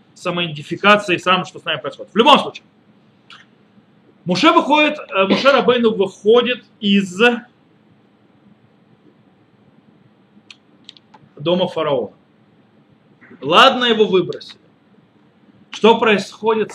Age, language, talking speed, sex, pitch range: 40-59, Russian, 80 wpm, male, 180-240 Hz